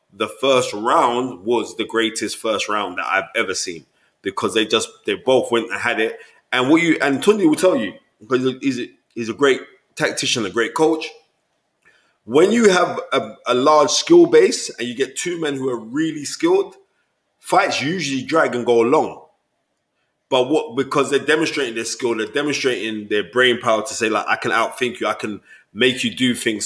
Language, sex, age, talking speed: English, male, 20-39, 195 wpm